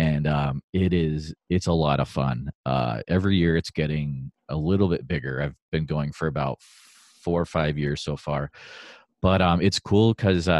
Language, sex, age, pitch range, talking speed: English, male, 30-49, 75-90 Hz, 185 wpm